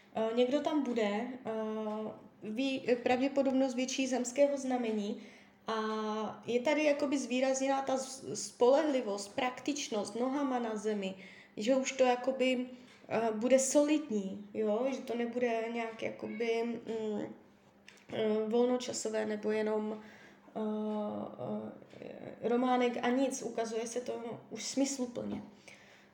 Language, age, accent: Czech, 20-39, native